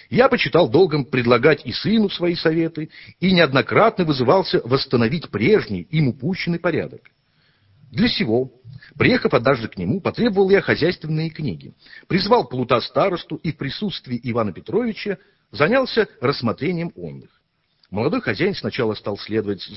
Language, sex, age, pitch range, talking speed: English, male, 50-69, 110-170 Hz, 125 wpm